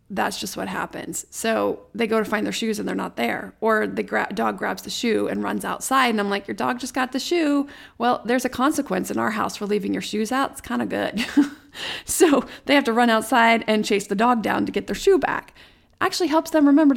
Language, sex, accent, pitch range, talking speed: English, female, American, 210-270 Hz, 240 wpm